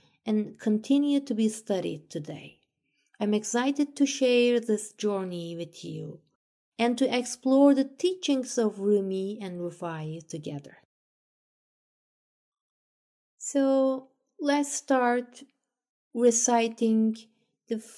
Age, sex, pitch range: 30-49, female, 180-245 Hz